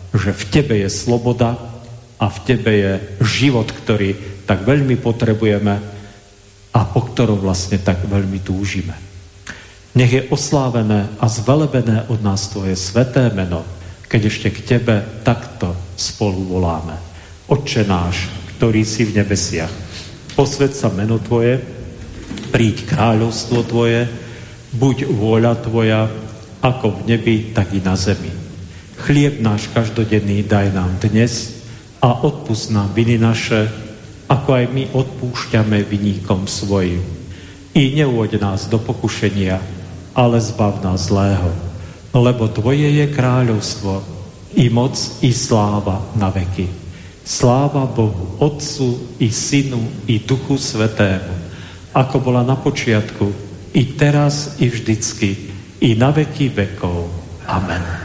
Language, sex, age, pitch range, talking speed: Slovak, male, 50-69, 95-120 Hz, 120 wpm